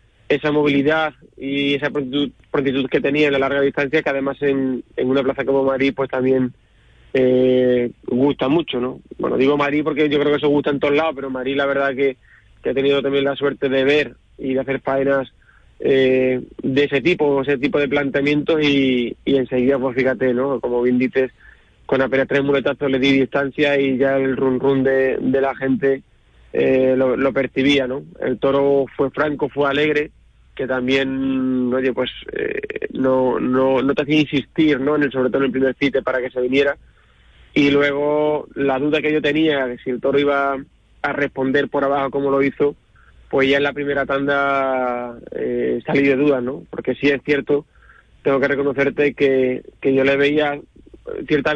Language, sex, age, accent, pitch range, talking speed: Spanish, male, 30-49, Spanish, 130-145 Hz, 190 wpm